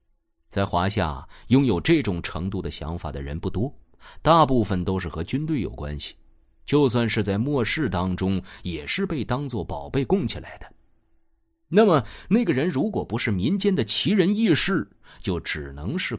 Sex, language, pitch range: male, Chinese, 85-125 Hz